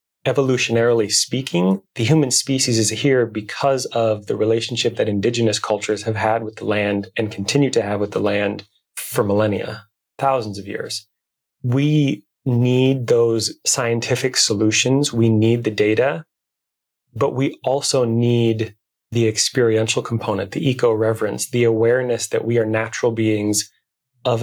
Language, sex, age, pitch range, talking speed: English, male, 30-49, 110-120 Hz, 140 wpm